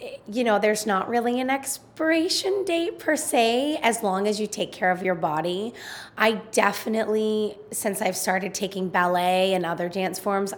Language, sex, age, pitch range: English, female, 20-39, 185-215 Hz